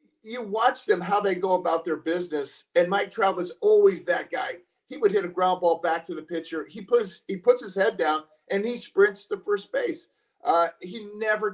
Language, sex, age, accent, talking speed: English, male, 40-59, American, 220 wpm